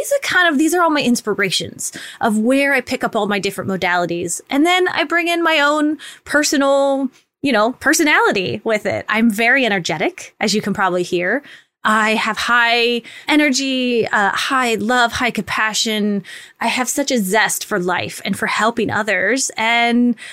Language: English